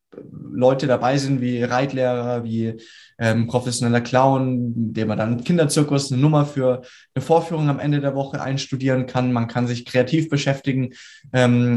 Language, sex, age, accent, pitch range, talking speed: German, male, 20-39, German, 120-145 Hz, 160 wpm